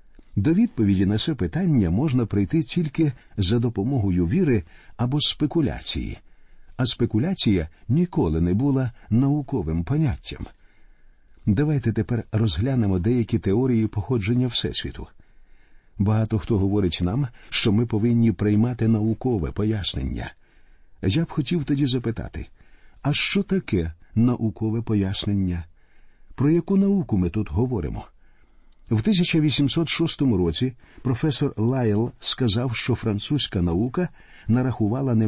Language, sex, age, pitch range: Ukrainian, male, 50-69, 105-140 Hz